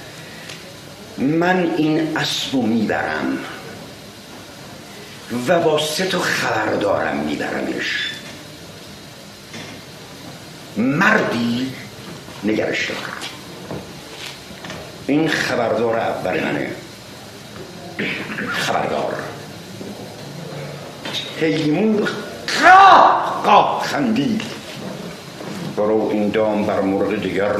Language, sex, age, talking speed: Persian, male, 60-79, 55 wpm